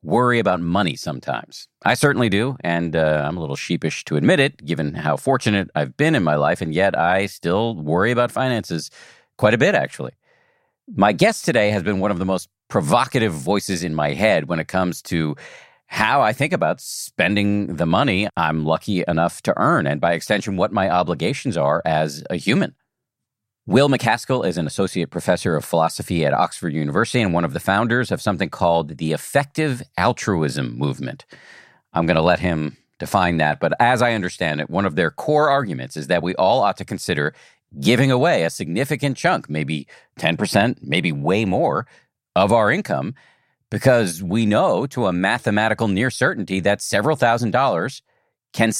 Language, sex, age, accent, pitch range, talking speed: English, male, 40-59, American, 85-115 Hz, 185 wpm